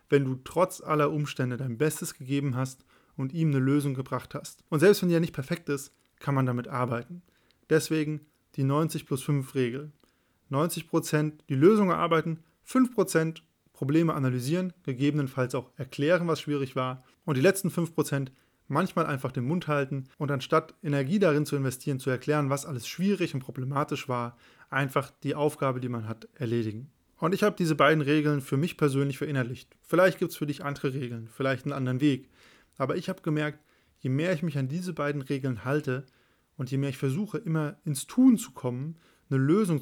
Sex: male